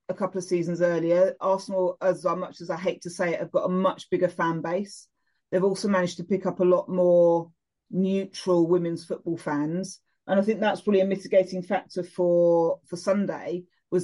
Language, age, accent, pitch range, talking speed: English, 30-49, British, 170-190 Hz, 195 wpm